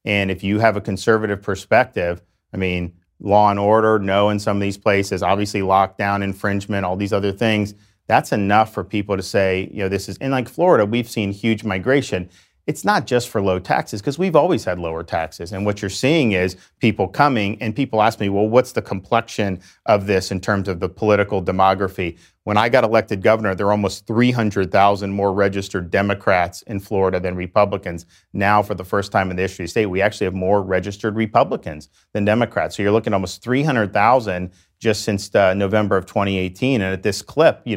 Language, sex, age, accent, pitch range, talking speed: English, male, 40-59, American, 95-110 Hz, 205 wpm